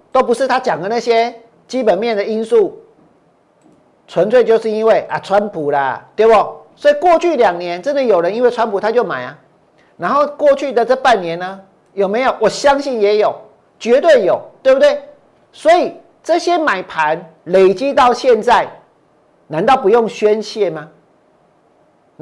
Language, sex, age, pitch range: Chinese, male, 40-59, 205-270 Hz